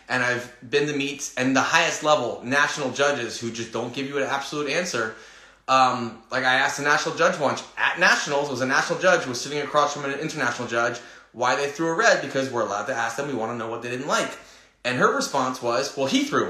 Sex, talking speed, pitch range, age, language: male, 240 wpm, 115-145 Hz, 20-39, English